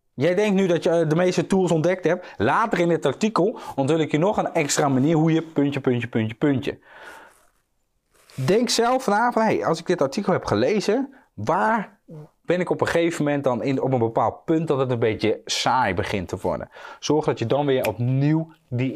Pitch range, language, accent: 130-180 Hz, Dutch, Dutch